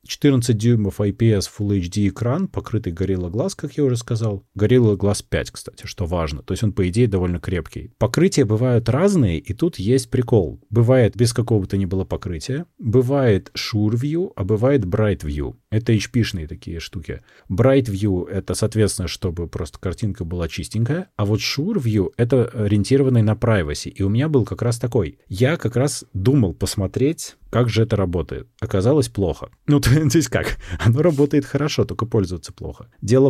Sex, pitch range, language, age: male, 95-130 Hz, Russian, 30-49